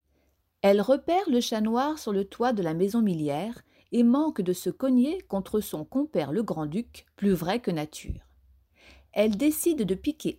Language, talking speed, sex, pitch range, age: French, 175 wpm, female, 175-245 Hz, 40-59